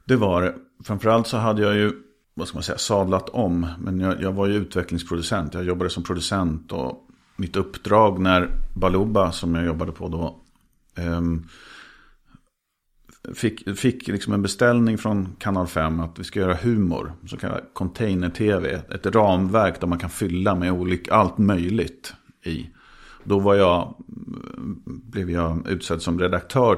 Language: English